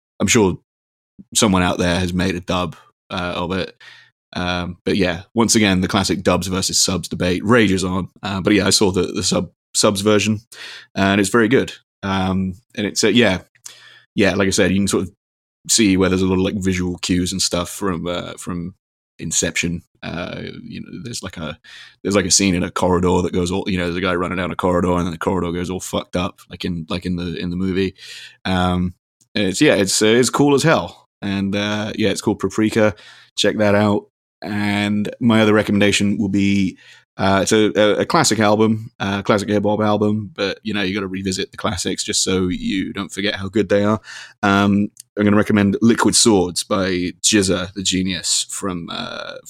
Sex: male